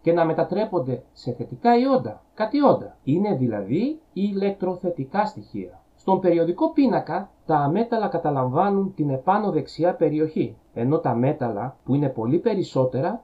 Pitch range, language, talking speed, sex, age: 135-210 Hz, Greek, 120 wpm, male, 30-49